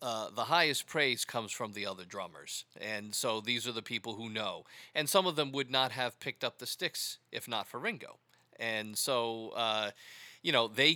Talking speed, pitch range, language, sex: 210 wpm, 110-140 Hz, English, male